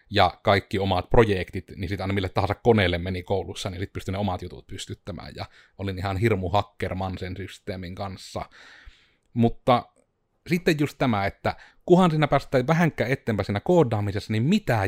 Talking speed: 165 wpm